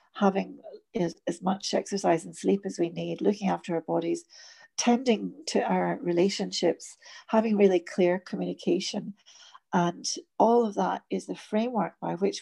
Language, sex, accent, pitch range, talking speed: English, female, British, 175-215 Hz, 145 wpm